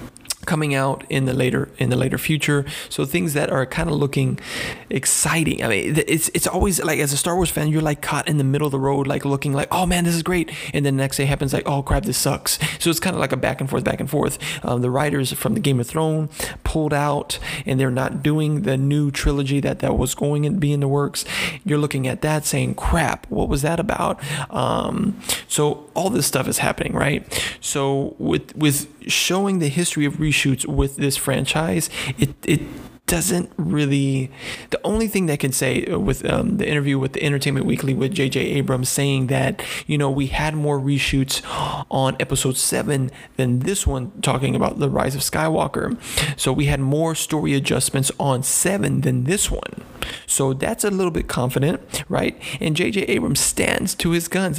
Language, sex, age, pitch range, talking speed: English, male, 30-49, 135-155 Hz, 210 wpm